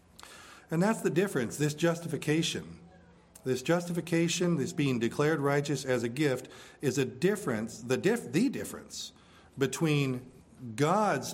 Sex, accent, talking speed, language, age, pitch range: male, American, 125 wpm, English, 50-69, 120-165 Hz